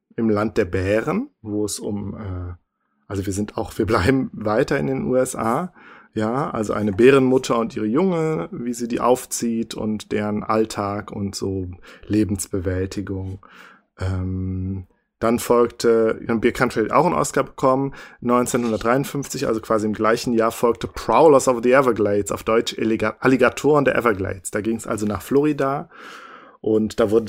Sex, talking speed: male, 150 wpm